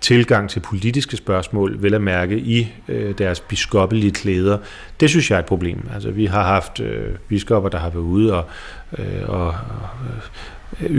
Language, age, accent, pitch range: Danish, 30-49, native, 95-115 Hz